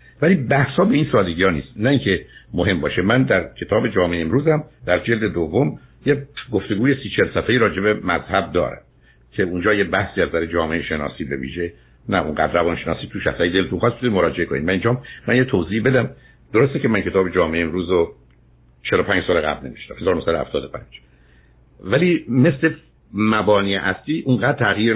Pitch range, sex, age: 90-125 Hz, male, 60-79